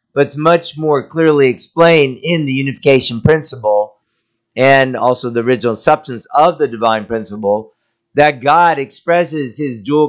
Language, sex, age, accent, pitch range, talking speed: English, male, 50-69, American, 125-160 Hz, 145 wpm